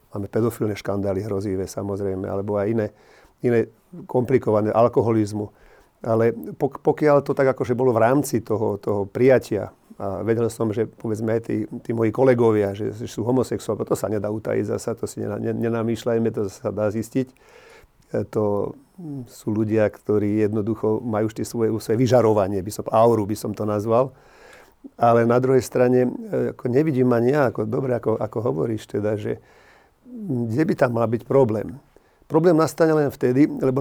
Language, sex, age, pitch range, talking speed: Slovak, male, 40-59, 105-125 Hz, 160 wpm